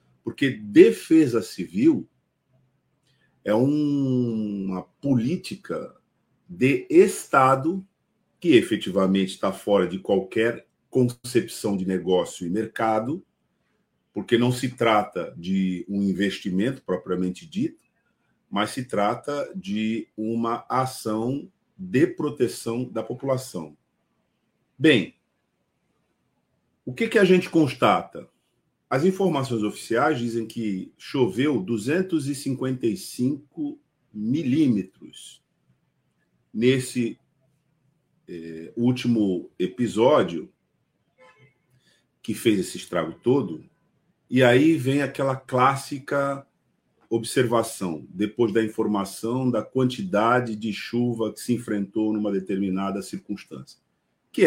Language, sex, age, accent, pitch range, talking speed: Portuguese, male, 50-69, Brazilian, 110-145 Hz, 90 wpm